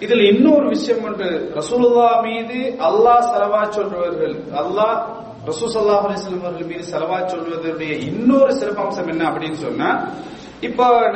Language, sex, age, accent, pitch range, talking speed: English, male, 40-59, Indian, 185-250 Hz, 100 wpm